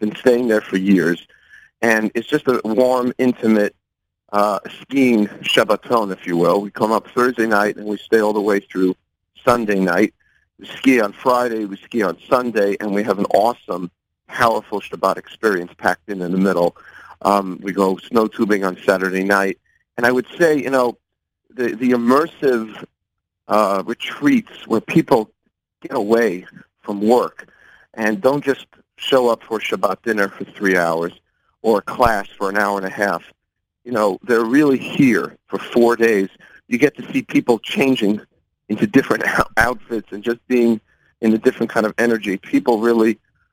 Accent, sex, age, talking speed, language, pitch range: American, male, 50-69, 170 wpm, English, 100-120 Hz